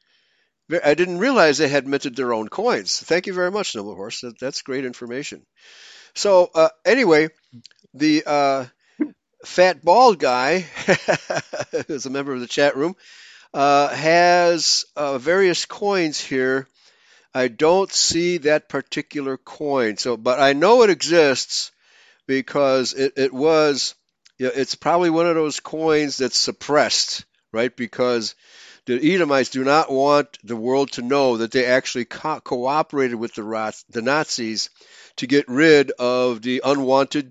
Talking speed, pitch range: 150 wpm, 135-175 Hz